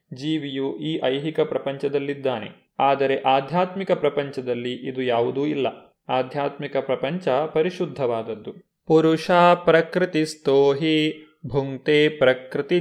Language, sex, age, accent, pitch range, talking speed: Kannada, male, 30-49, native, 135-170 Hz, 85 wpm